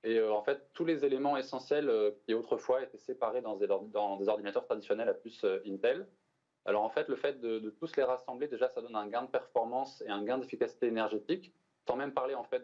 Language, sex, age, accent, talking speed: French, male, 20-39, French, 215 wpm